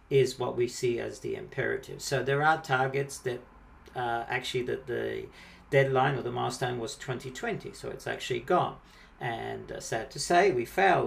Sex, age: male, 50-69